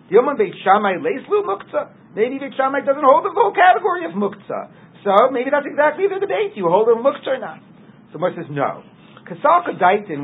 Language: English